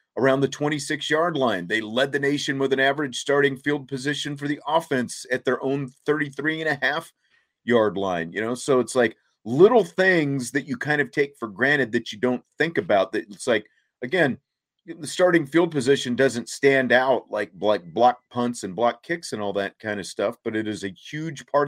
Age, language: 40-59, English